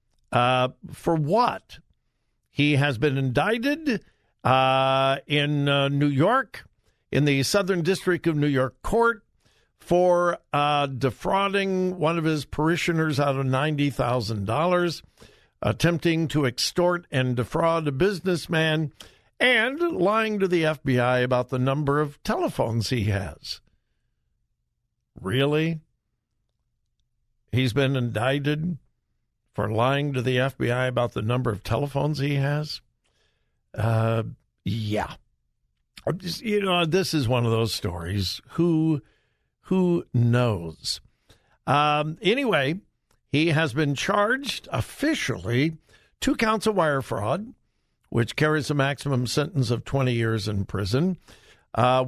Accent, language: American, English